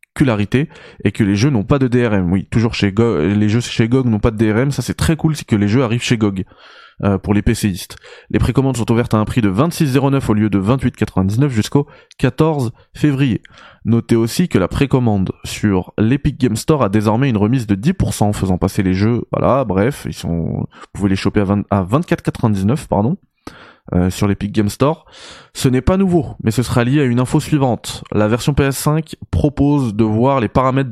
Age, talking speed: 20-39, 210 wpm